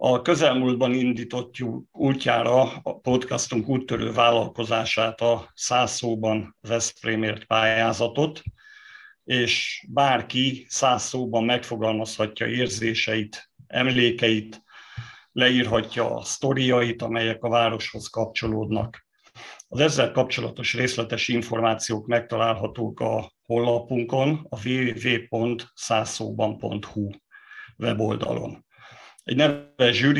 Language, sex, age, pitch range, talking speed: Hungarian, male, 50-69, 115-125 Hz, 80 wpm